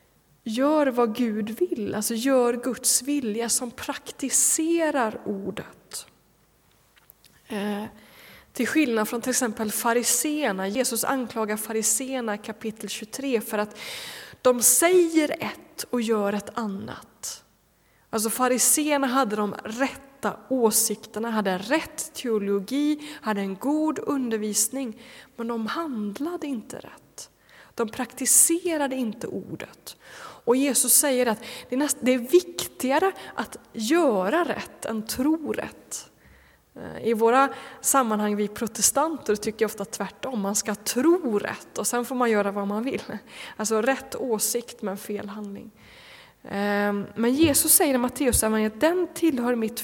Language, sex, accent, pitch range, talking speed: Swedish, female, native, 220-275 Hz, 125 wpm